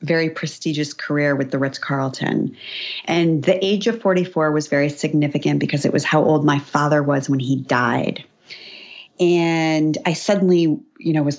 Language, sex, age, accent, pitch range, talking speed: English, female, 40-59, American, 150-210 Hz, 165 wpm